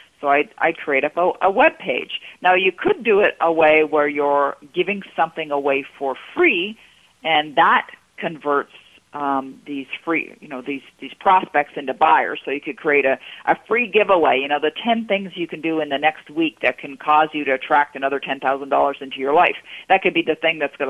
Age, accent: 50-69, American